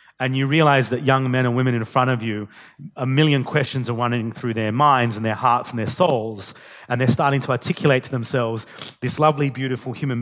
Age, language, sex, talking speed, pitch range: 30-49, English, male, 215 wpm, 120-140 Hz